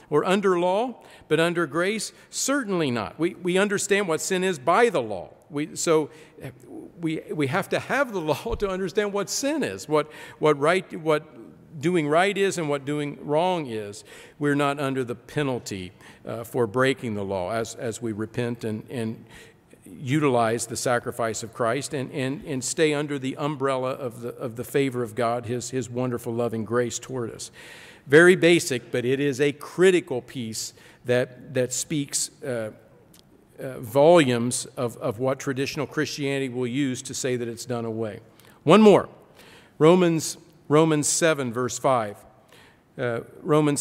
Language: English